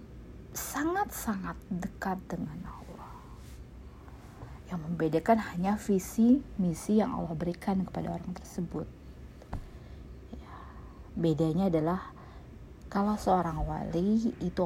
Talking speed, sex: 85 wpm, female